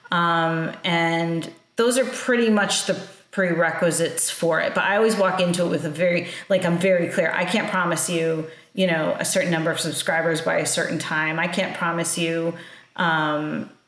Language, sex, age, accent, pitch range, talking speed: English, female, 30-49, American, 165-185 Hz, 180 wpm